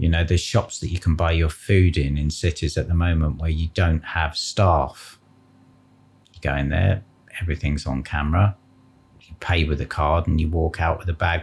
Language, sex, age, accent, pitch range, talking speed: English, male, 40-59, British, 85-115 Hz, 210 wpm